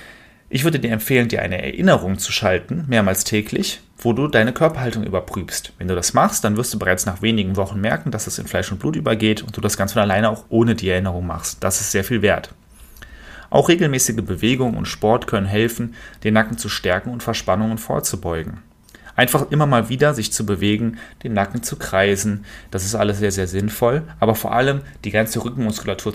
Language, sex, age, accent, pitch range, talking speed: German, male, 30-49, German, 100-125 Hz, 200 wpm